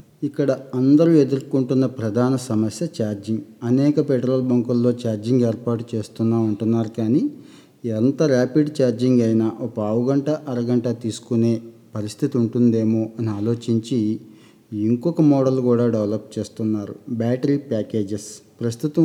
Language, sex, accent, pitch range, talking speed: Telugu, male, native, 115-130 Hz, 110 wpm